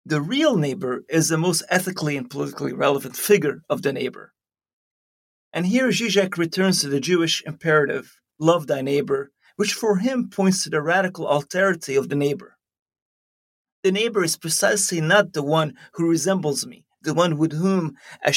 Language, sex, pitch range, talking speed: English, male, 145-195 Hz, 165 wpm